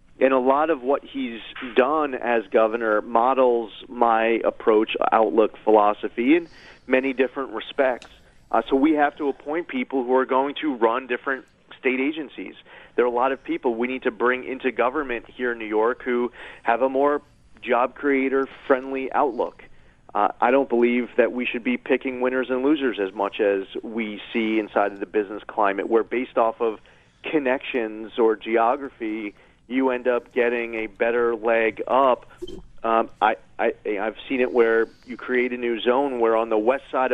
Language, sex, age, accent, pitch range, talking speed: English, male, 40-59, American, 115-130 Hz, 175 wpm